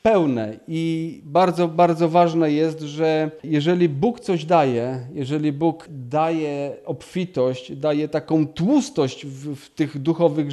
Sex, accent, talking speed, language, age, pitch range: male, native, 125 wpm, Polish, 40-59, 145-180 Hz